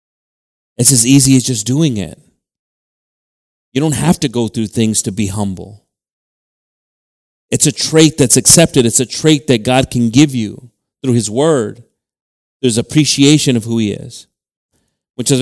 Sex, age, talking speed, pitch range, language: male, 30-49, 155 wpm, 115-185 Hz, English